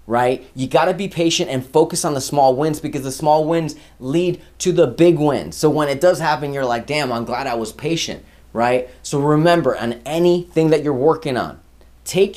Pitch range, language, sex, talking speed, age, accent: 110-165 Hz, English, male, 215 wpm, 20-39, American